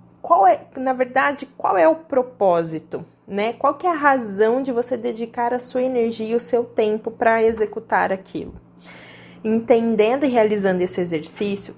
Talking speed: 165 wpm